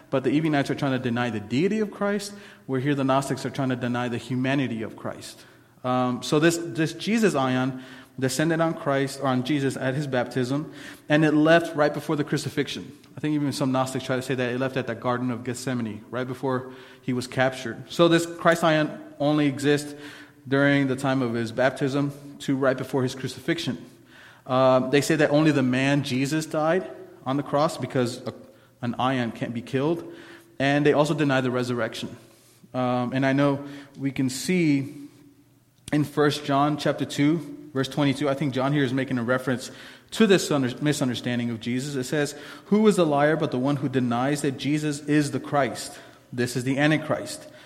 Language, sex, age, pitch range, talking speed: English, male, 30-49, 125-150 Hz, 195 wpm